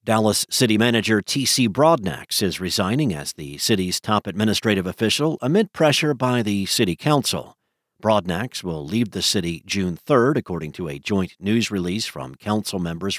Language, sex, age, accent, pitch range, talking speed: English, male, 50-69, American, 100-145 Hz, 160 wpm